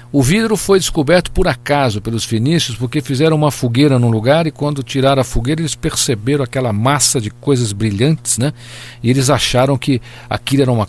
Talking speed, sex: 185 wpm, male